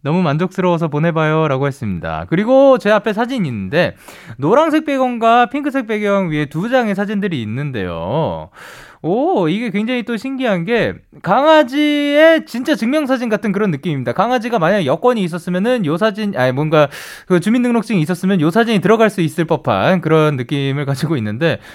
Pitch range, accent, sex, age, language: 145-235 Hz, native, male, 20-39, Korean